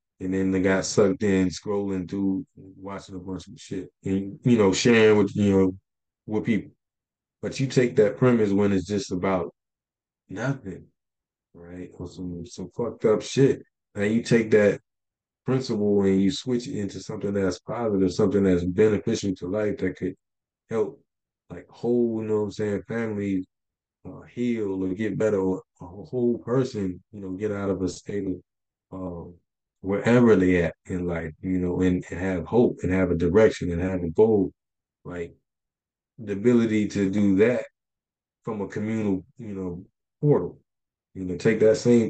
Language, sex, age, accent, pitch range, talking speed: English, male, 20-39, American, 95-115 Hz, 175 wpm